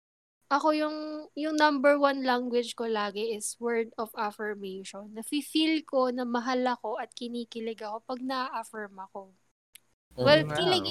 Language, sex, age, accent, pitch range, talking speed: Filipino, female, 20-39, native, 215-270 Hz, 145 wpm